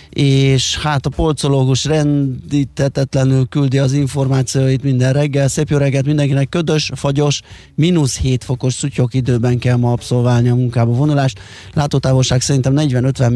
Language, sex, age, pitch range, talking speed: Hungarian, male, 30-49, 120-145 Hz, 135 wpm